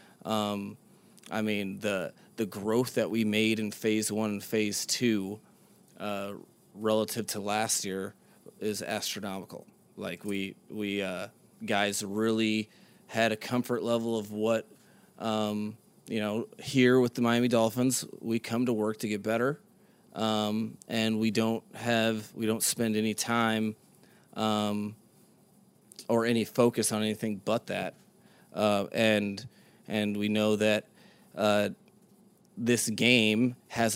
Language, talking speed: English, 135 wpm